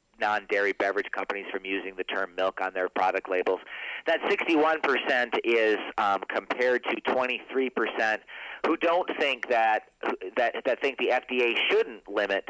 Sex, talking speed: male, 145 wpm